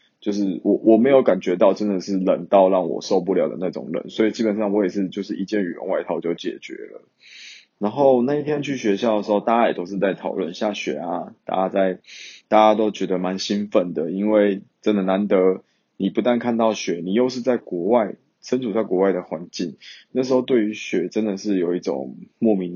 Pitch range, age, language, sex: 95-110 Hz, 20-39, Chinese, male